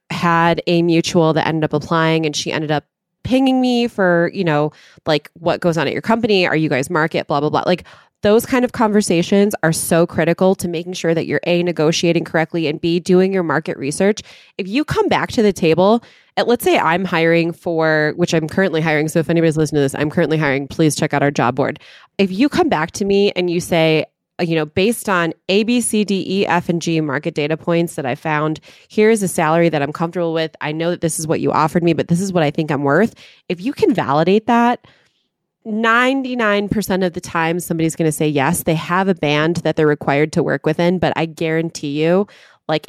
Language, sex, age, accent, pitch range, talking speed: English, female, 20-39, American, 155-185 Hz, 230 wpm